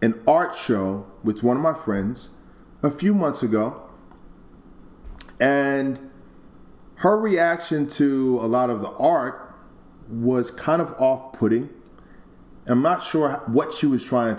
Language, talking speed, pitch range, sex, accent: English, 135 wpm, 110-150 Hz, male, American